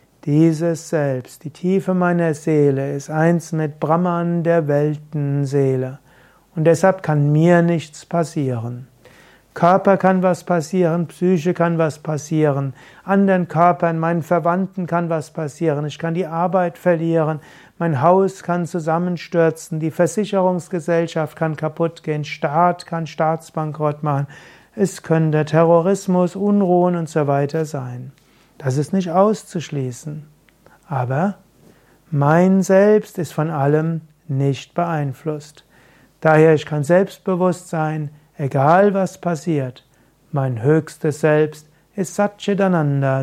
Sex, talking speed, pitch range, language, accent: male, 115 wpm, 145-175 Hz, German, German